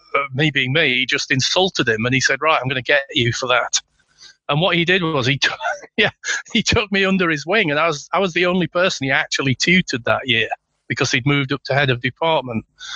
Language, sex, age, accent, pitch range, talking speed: English, male, 40-59, British, 130-190 Hz, 255 wpm